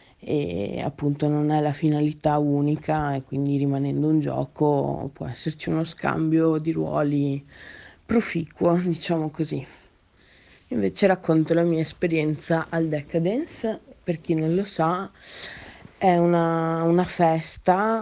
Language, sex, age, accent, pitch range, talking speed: Italian, female, 20-39, native, 150-185 Hz, 125 wpm